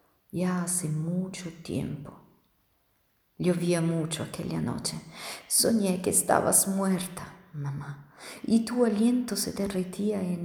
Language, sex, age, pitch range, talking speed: Italian, female, 40-59, 155-190 Hz, 110 wpm